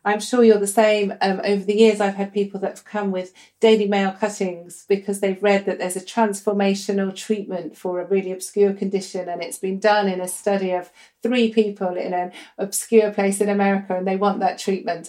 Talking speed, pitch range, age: 205 wpm, 195-230 Hz, 40-59